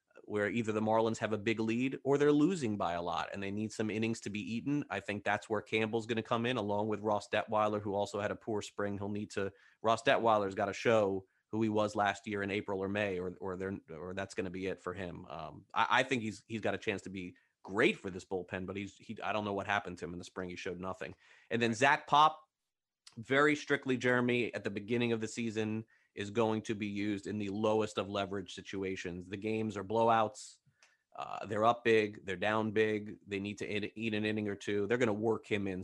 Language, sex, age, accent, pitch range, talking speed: English, male, 30-49, American, 100-120 Hz, 255 wpm